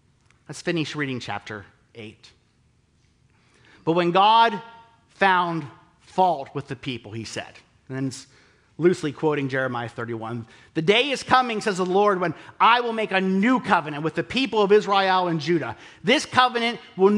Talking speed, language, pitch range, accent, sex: 160 wpm, English, 135-195 Hz, American, male